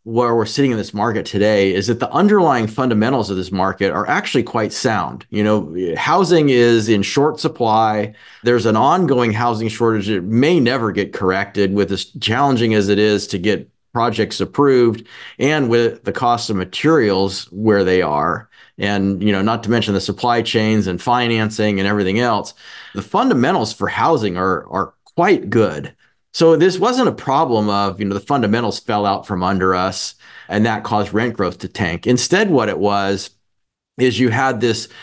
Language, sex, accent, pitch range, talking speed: English, male, American, 100-125 Hz, 185 wpm